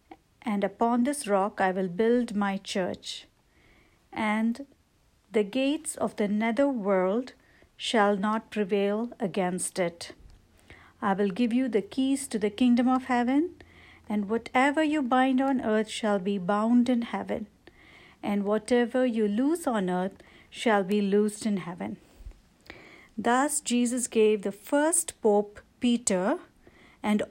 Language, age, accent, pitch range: English, 60-79, Indian, 200-250 Hz